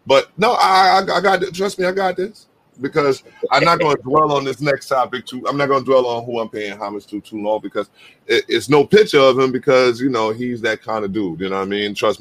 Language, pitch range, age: English, 95-125 Hz, 30-49